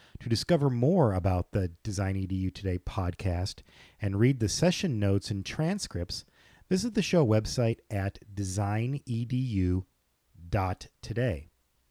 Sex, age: male, 40-59